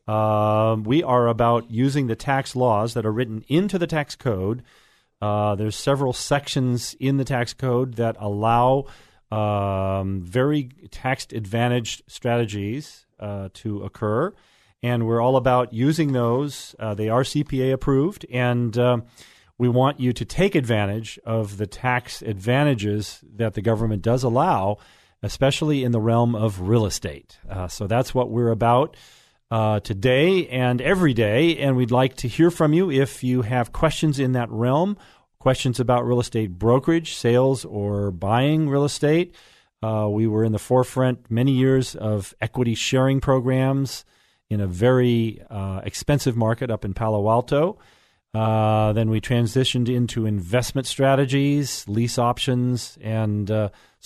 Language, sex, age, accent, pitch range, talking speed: English, male, 40-59, American, 110-135 Hz, 150 wpm